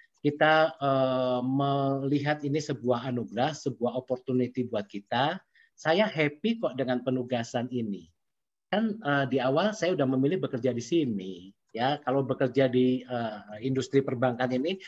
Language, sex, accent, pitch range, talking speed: English, male, Indonesian, 125-150 Hz, 135 wpm